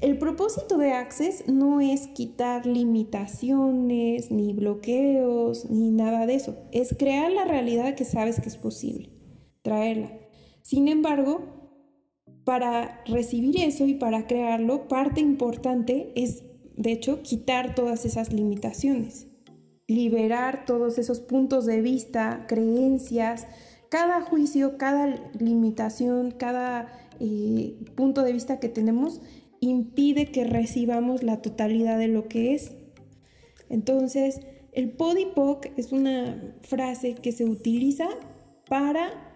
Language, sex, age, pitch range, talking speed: Spanish, female, 20-39, 230-275 Hz, 120 wpm